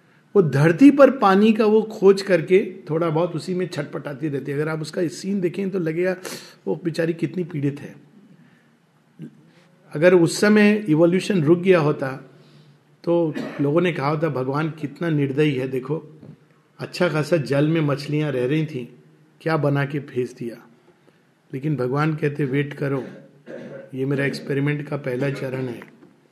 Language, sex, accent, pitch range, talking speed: Hindi, male, native, 150-185 Hz, 155 wpm